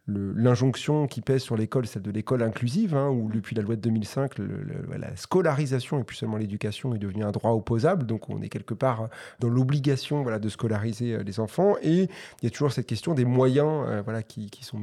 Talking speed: 225 wpm